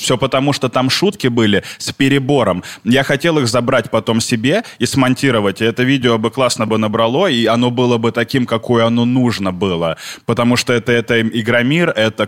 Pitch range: 105-130 Hz